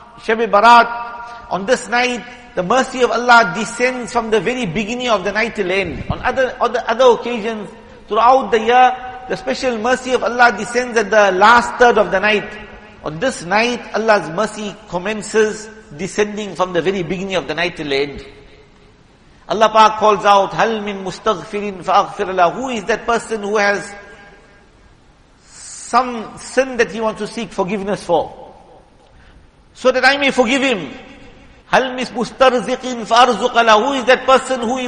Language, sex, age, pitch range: English, male, 50-69, 205-245 Hz